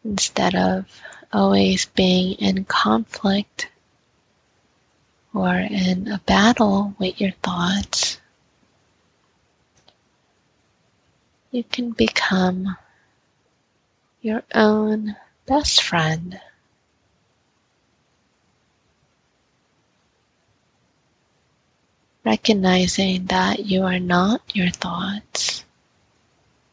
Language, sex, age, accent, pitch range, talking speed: English, female, 20-39, American, 180-215 Hz, 60 wpm